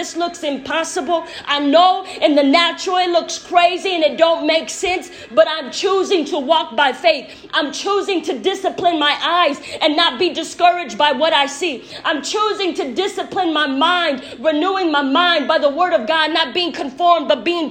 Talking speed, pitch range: 185 wpm, 250-335 Hz